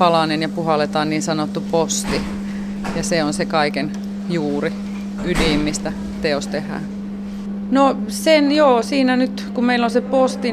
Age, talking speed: 30-49, 150 wpm